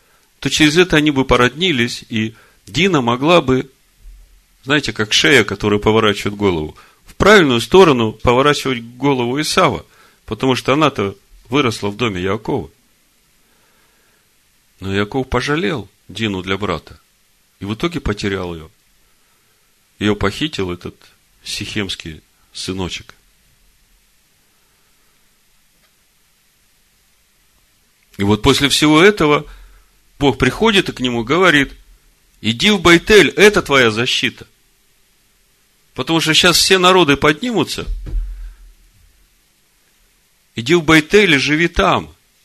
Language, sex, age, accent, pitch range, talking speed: Russian, male, 40-59, native, 105-150 Hz, 105 wpm